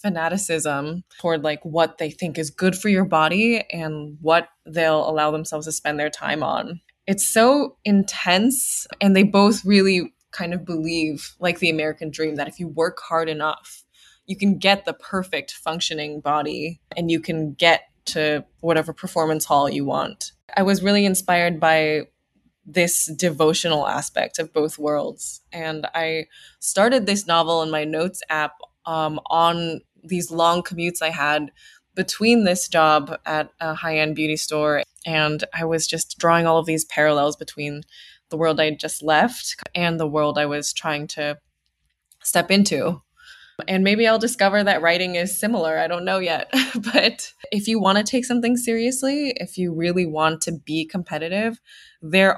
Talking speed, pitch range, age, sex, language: 165 wpm, 155-190 Hz, 20-39, female, English